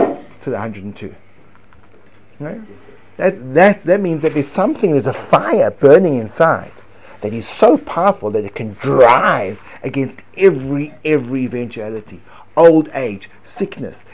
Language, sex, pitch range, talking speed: English, male, 120-175 Hz, 130 wpm